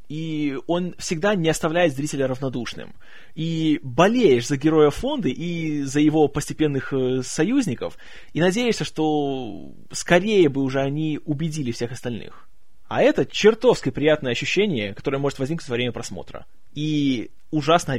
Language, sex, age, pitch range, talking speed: Russian, male, 20-39, 145-180 Hz, 135 wpm